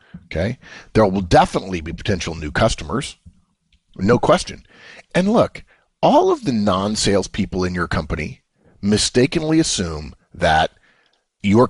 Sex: male